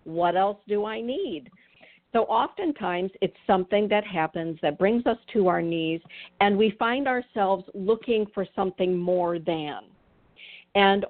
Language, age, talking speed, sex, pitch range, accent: English, 50-69, 145 wpm, female, 170-200 Hz, American